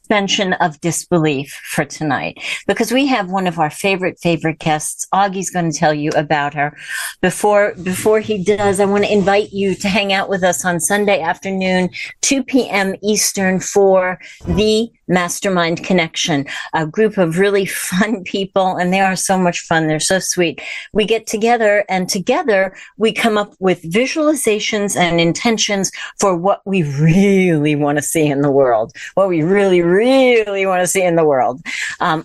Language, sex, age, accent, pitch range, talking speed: English, female, 50-69, American, 180-215 Hz, 170 wpm